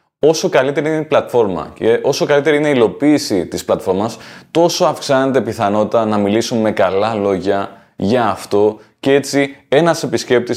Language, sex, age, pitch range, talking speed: Greek, male, 20-39, 110-145 Hz, 155 wpm